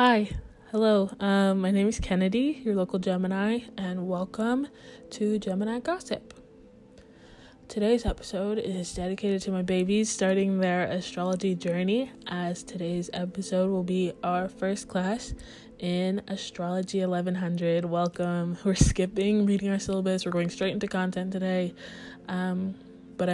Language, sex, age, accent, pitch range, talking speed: English, female, 20-39, American, 175-205 Hz, 130 wpm